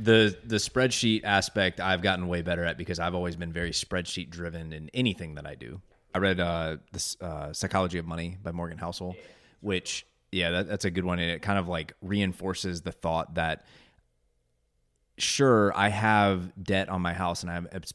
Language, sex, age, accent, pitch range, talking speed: English, male, 20-39, American, 85-100 Hz, 185 wpm